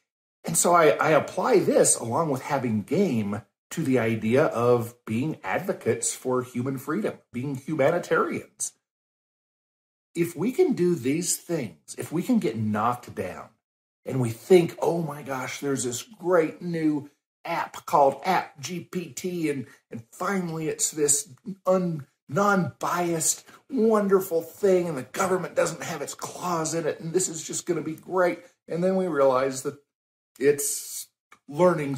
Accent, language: American, English